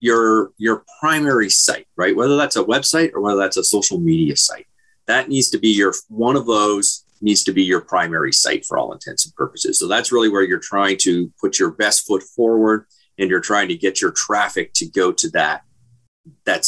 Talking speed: 210 wpm